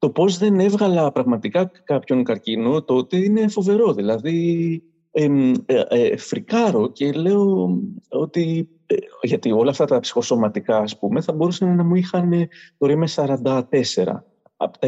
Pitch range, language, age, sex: 120-190 Hz, Greek, 30-49, male